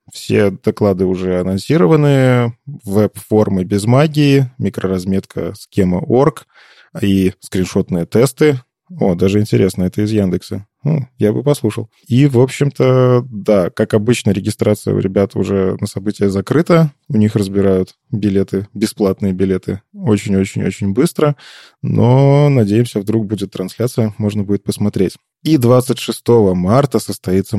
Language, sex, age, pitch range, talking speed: Russian, male, 20-39, 95-125 Hz, 120 wpm